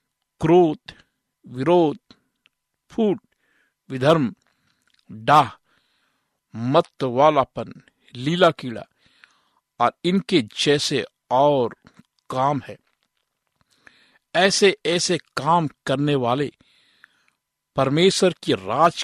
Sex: male